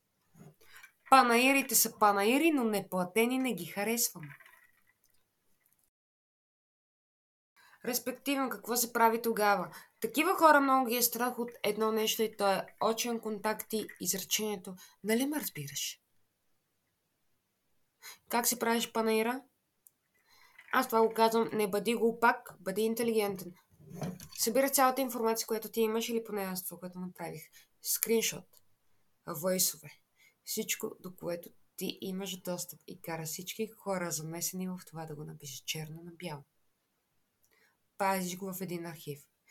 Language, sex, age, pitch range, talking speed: Bulgarian, female, 20-39, 175-225 Hz, 125 wpm